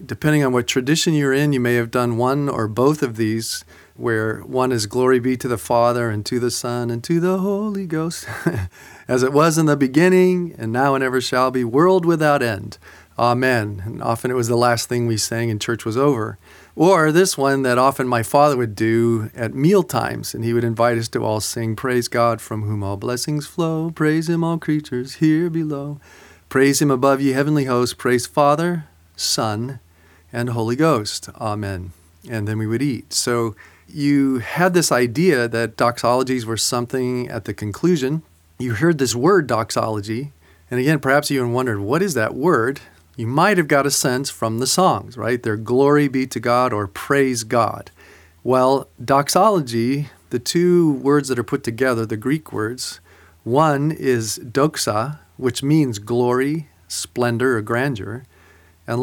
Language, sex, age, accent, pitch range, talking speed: English, male, 40-59, American, 115-145 Hz, 180 wpm